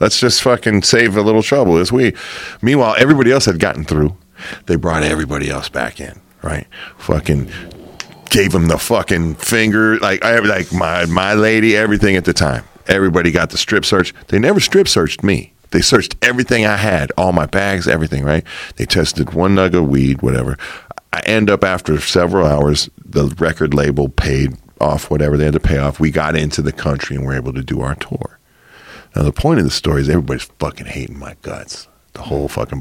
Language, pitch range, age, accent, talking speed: English, 75-105 Hz, 40-59, American, 200 wpm